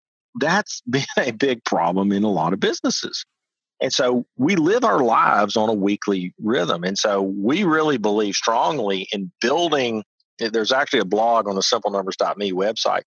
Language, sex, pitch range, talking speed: English, male, 95-130 Hz, 165 wpm